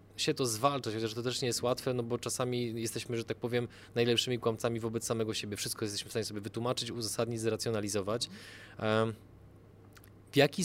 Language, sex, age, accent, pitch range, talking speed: Polish, male, 20-39, native, 115-135 Hz, 175 wpm